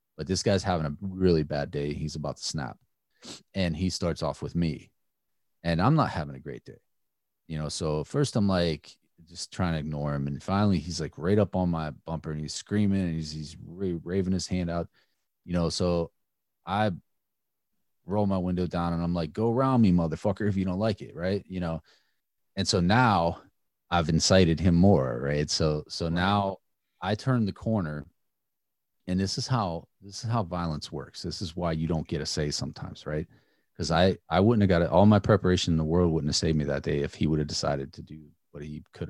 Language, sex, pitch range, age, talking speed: English, male, 80-95 Hz, 30-49, 215 wpm